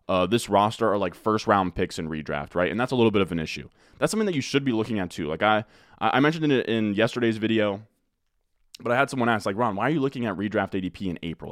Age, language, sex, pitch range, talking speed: 20-39, English, male, 95-120 Hz, 270 wpm